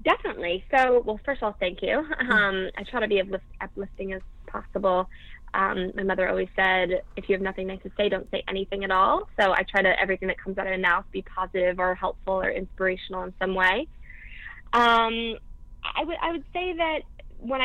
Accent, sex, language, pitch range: American, female, English, 185-210 Hz